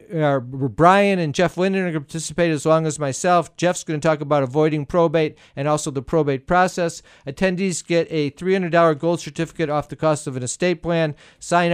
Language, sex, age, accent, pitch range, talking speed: English, male, 50-69, American, 155-185 Hz, 195 wpm